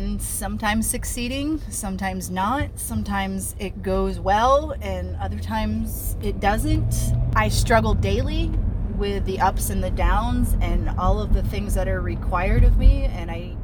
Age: 30-49